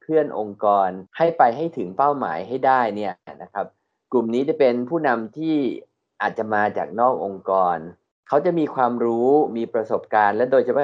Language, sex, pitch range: Thai, male, 105-140 Hz